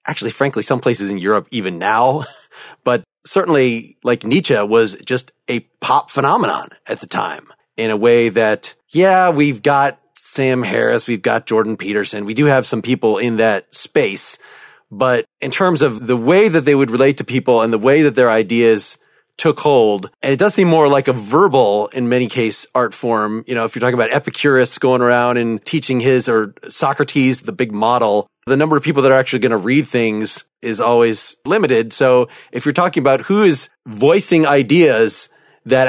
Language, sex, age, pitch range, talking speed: English, male, 30-49, 120-150 Hz, 190 wpm